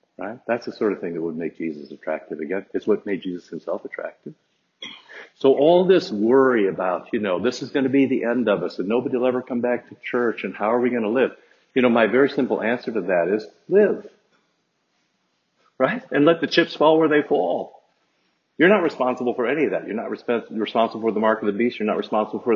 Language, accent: English, American